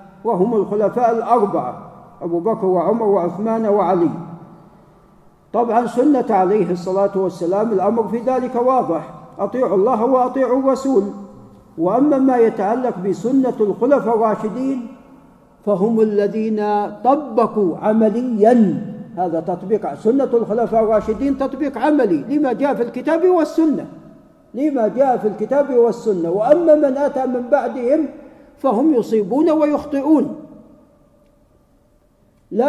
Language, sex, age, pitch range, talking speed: Arabic, male, 50-69, 200-265 Hz, 105 wpm